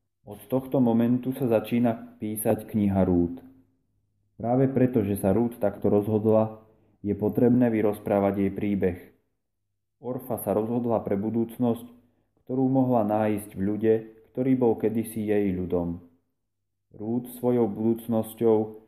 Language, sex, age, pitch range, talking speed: Slovak, male, 30-49, 100-115 Hz, 120 wpm